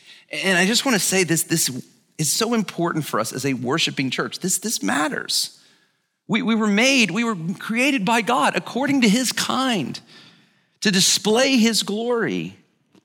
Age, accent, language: 40-59, American, English